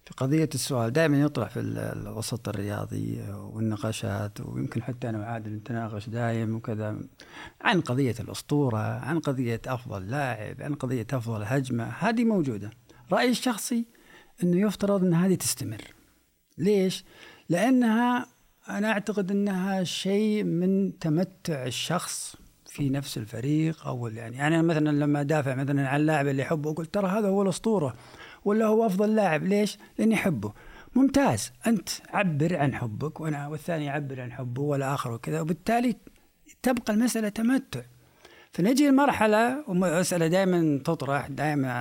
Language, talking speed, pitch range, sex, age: Arabic, 135 wpm, 130-195 Hz, male, 50-69